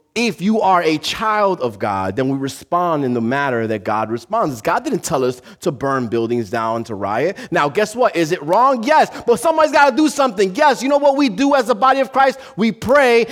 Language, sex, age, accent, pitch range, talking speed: English, male, 30-49, American, 175-250 Hz, 235 wpm